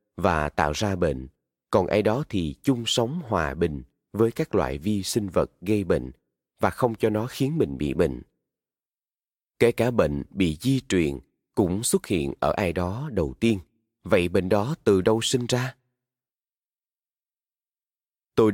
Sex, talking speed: male, 160 wpm